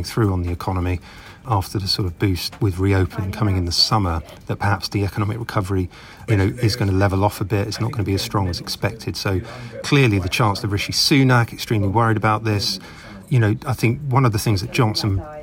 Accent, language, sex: British, English, male